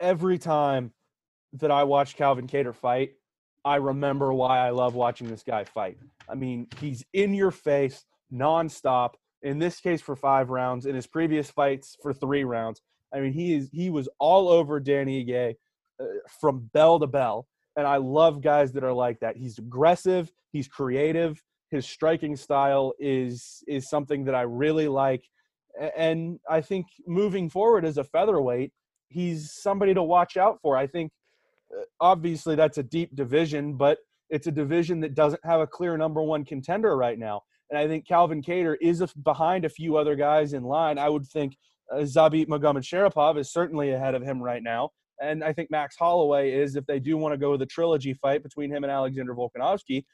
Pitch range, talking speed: 135-165 Hz, 190 wpm